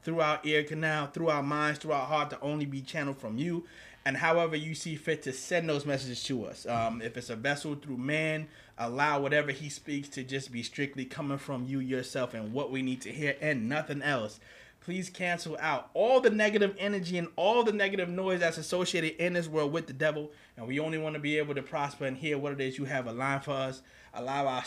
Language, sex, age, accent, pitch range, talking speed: English, male, 30-49, American, 135-160 Hz, 235 wpm